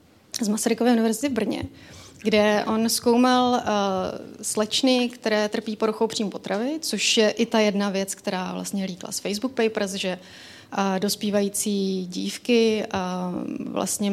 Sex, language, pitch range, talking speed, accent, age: female, Czech, 200-230 Hz, 140 wpm, native, 30-49